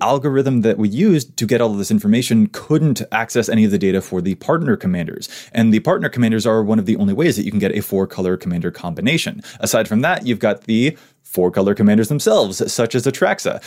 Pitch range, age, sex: 110-165 Hz, 20-39, male